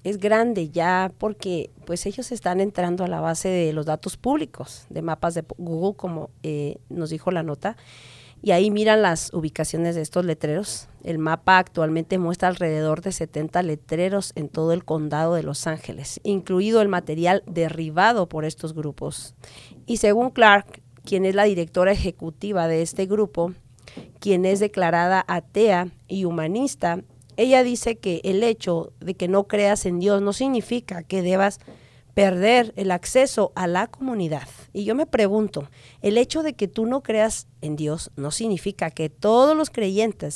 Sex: female